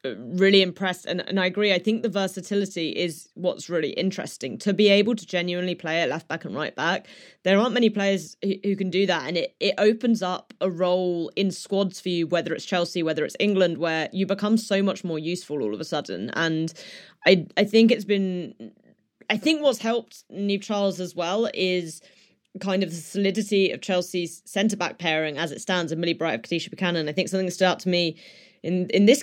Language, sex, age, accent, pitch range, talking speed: English, female, 20-39, British, 175-205 Hz, 220 wpm